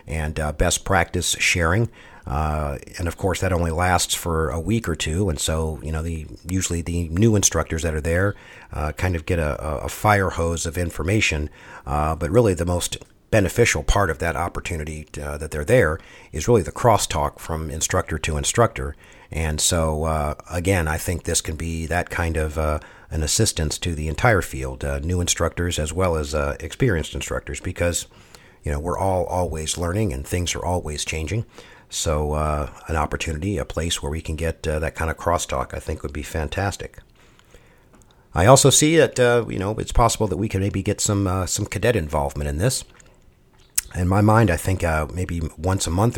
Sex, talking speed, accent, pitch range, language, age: male, 200 wpm, American, 80-95 Hz, English, 50-69